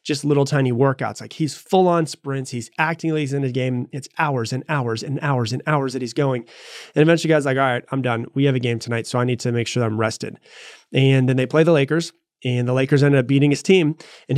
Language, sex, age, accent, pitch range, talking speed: English, male, 30-49, American, 130-165 Hz, 265 wpm